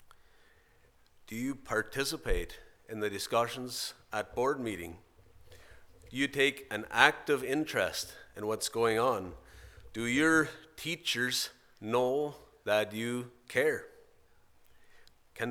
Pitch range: 100-130 Hz